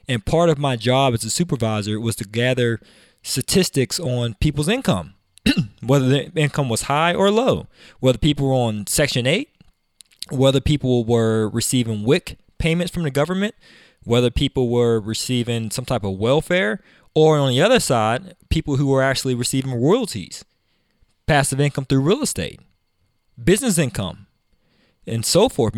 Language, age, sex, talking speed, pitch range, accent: English, 20-39, male, 155 wpm, 115-150 Hz, American